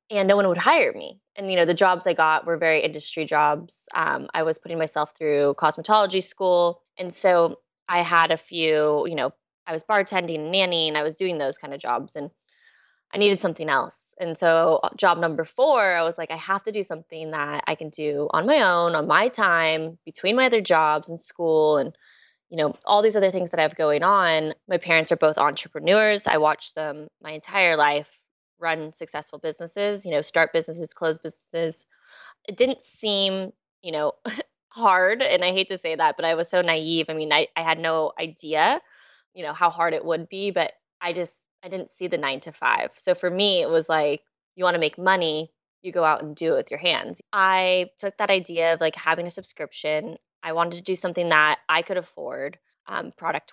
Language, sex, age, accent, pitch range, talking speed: English, female, 20-39, American, 155-185 Hz, 215 wpm